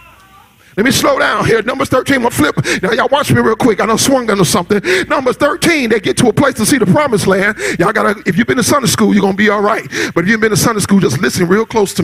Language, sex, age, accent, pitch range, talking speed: English, male, 40-59, American, 210-315 Hz, 295 wpm